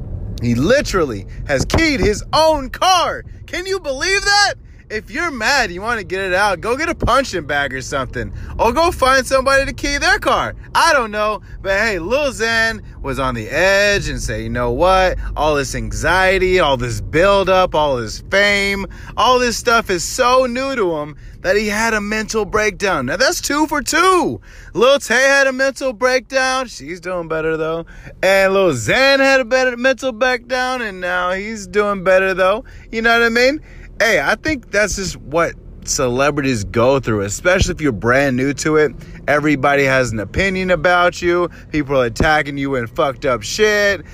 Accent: American